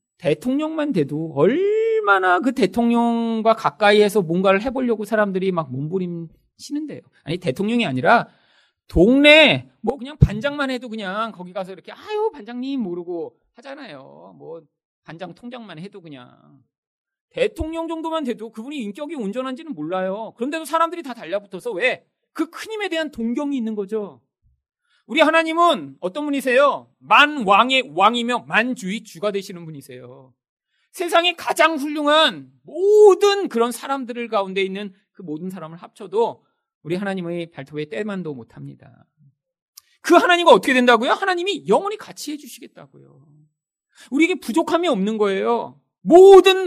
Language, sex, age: Korean, male, 40-59